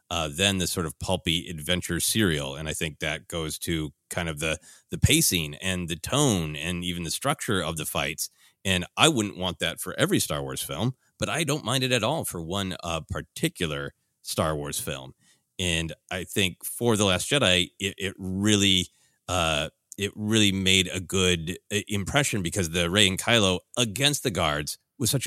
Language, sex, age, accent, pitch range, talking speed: English, male, 30-49, American, 85-115 Hz, 190 wpm